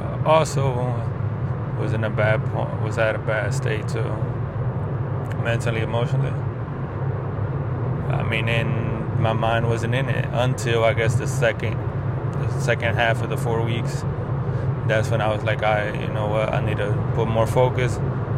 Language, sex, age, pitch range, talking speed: English, male, 20-39, 115-130 Hz, 165 wpm